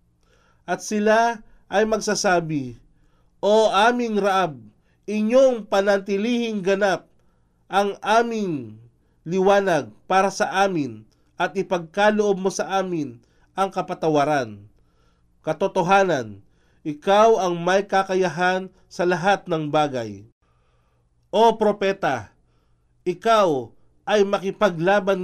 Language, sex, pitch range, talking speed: Filipino, male, 145-210 Hz, 90 wpm